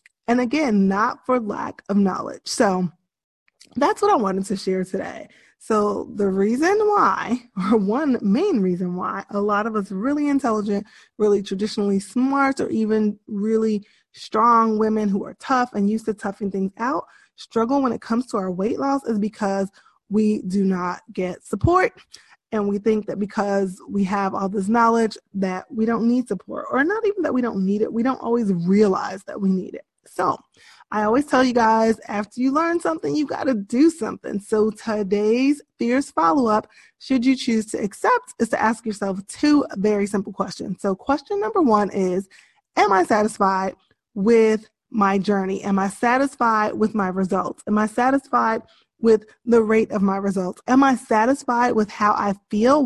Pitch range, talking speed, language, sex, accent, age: 200-245 Hz, 180 wpm, English, female, American, 20-39